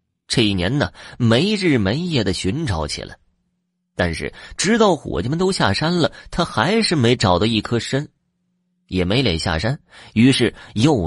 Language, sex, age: Chinese, male, 30-49